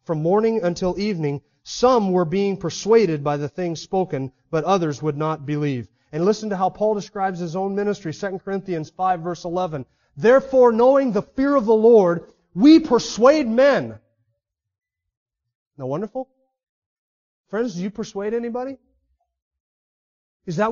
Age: 30-49